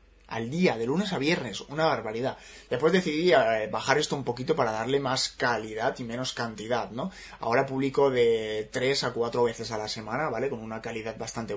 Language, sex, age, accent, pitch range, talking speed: Spanish, male, 20-39, Spanish, 110-140 Hz, 195 wpm